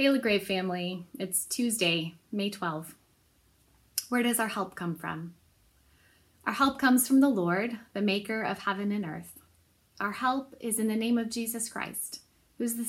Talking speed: 170 wpm